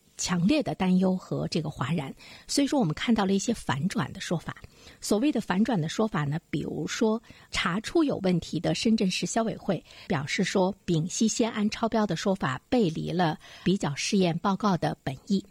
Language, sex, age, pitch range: Chinese, female, 50-69, 170-230 Hz